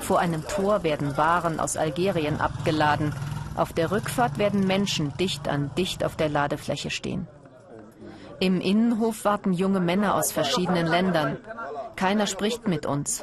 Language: German